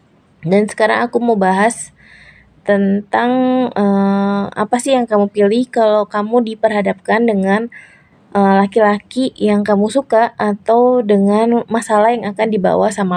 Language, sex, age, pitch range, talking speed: English, female, 20-39, 190-225 Hz, 130 wpm